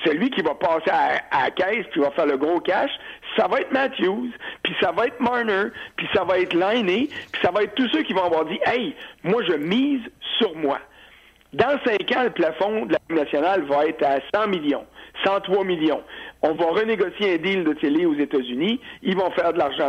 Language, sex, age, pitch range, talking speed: French, male, 60-79, 155-235 Hz, 230 wpm